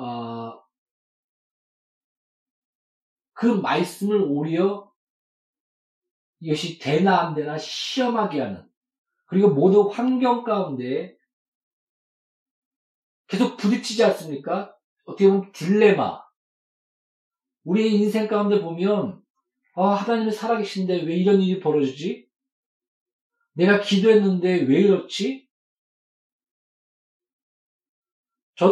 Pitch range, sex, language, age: 165-260 Hz, male, Korean, 40-59